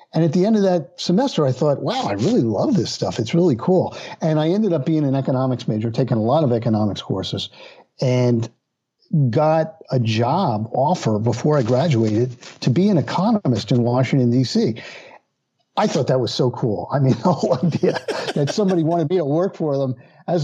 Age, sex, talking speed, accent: 50-69, male, 195 wpm, American